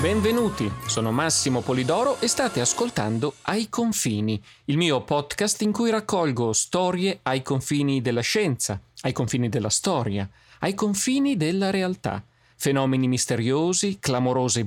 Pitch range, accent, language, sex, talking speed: 120-185 Hz, native, Italian, male, 125 wpm